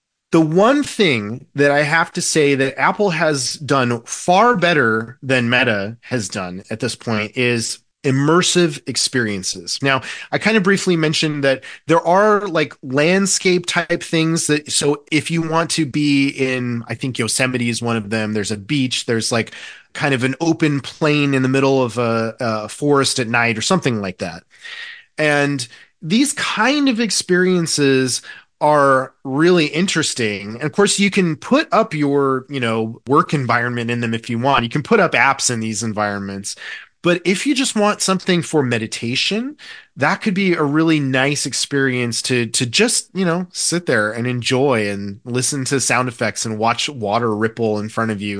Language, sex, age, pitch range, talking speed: English, male, 30-49, 120-170 Hz, 180 wpm